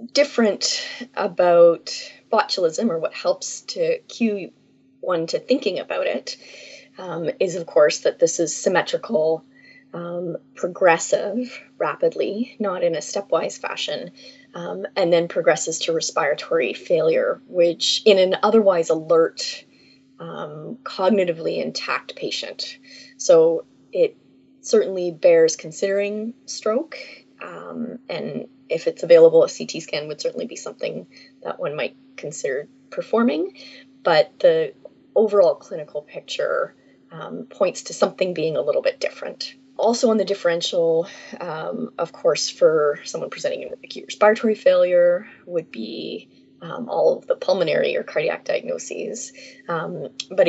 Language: English